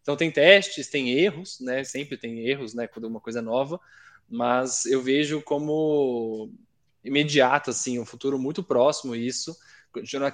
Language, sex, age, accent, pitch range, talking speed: Portuguese, male, 20-39, Brazilian, 125-160 Hz, 165 wpm